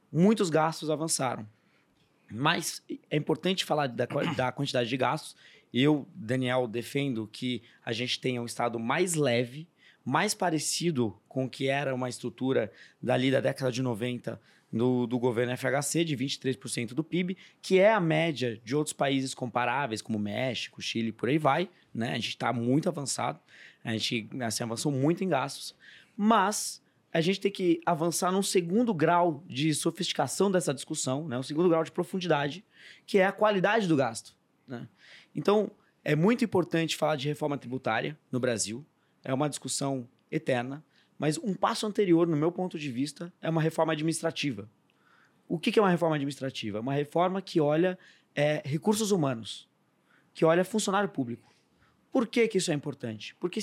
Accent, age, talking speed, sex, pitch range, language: Brazilian, 20-39, 165 wpm, male, 125-175 Hz, Portuguese